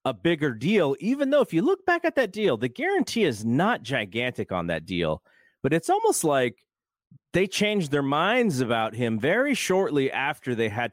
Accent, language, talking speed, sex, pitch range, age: American, English, 190 wpm, male, 110-170 Hz, 30-49